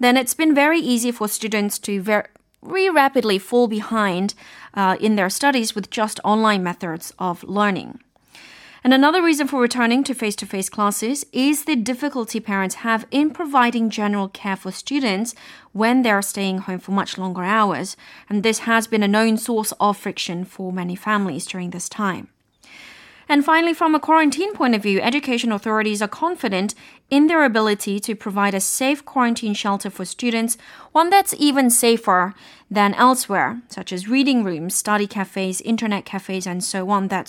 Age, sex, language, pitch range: 30-49, female, Korean, 200-255 Hz